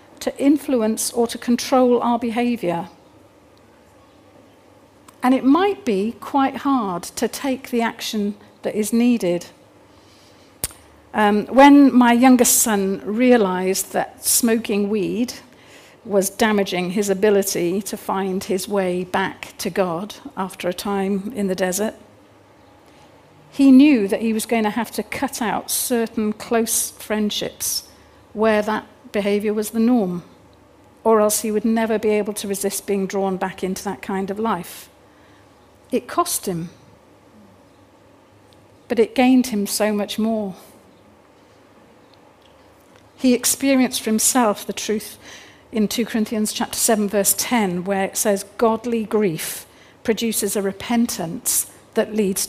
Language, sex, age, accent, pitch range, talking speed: English, female, 50-69, British, 195-240 Hz, 135 wpm